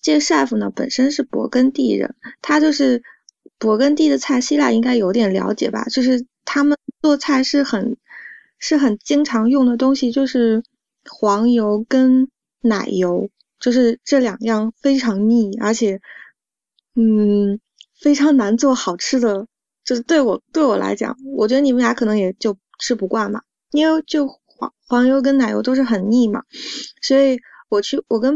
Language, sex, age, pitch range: Chinese, female, 20-39, 220-270 Hz